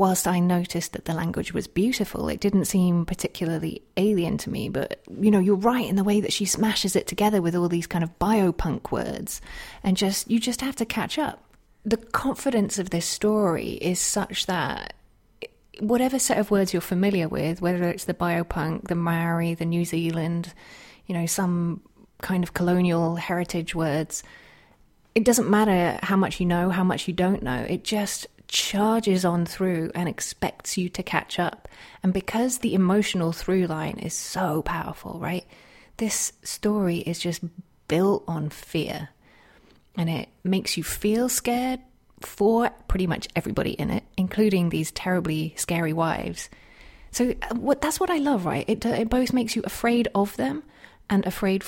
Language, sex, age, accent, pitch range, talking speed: English, female, 30-49, British, 170-215 Hz, 170 wpm